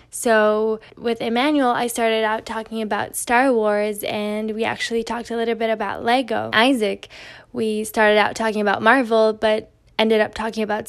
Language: English